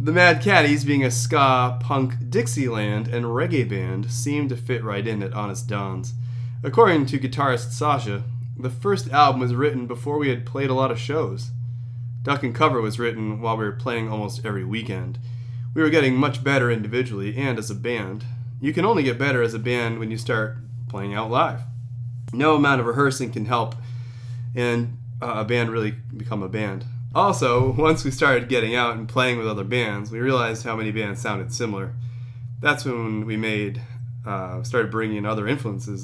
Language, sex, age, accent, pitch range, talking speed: English, male, 30-49, American, 115-125 Hz, 185 wpm